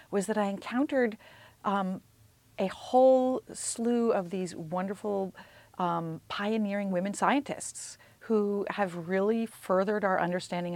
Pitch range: 155-200 Hz